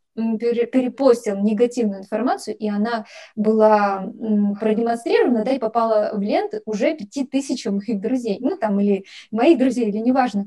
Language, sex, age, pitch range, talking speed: Russian, female, 20-39, 210-260 Hz, 140 wpm